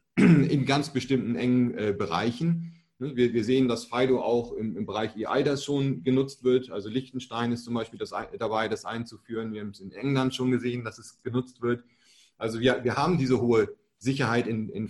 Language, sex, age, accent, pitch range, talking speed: German, male, 30-49, German, 120-140 Hz, 175 wpm